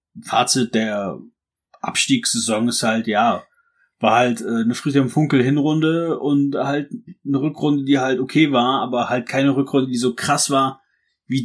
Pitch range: 130-195 Hz